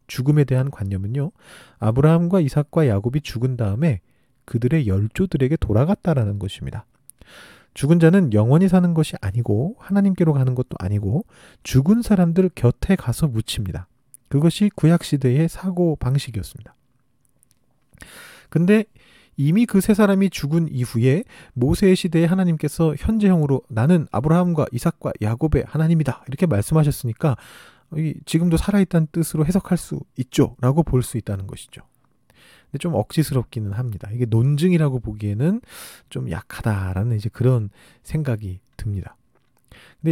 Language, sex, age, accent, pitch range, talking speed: English, male, 40-59, Korean, 115-165 Hz, 105 wpm